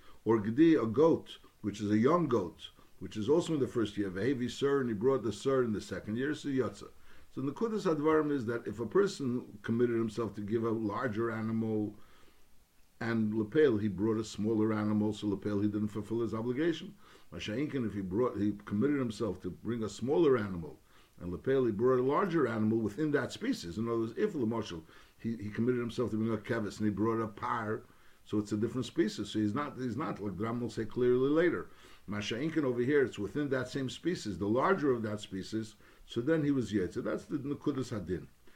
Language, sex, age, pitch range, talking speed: English, male, 60-79, 105-135 Hz, 220 wpm